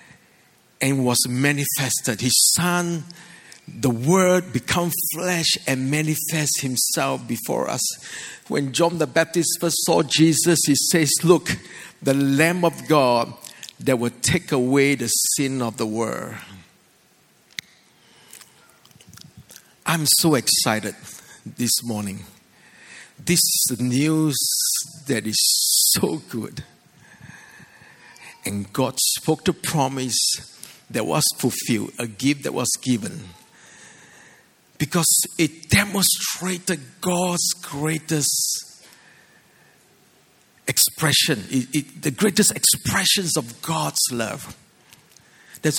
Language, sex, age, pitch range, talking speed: English, male, 60-79, 140-200 Hz, 100 wpm